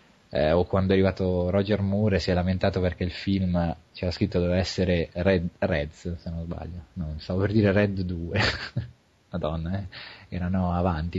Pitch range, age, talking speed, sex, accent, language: 90-105 Hz, 30-49, 170 wpm, male, Italian, English